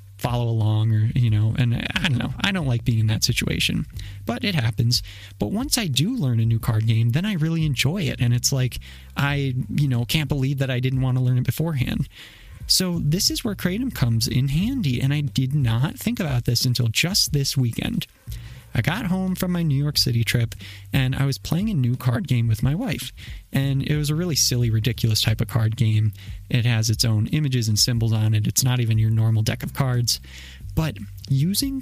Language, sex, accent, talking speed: English, male, American, 225 wpm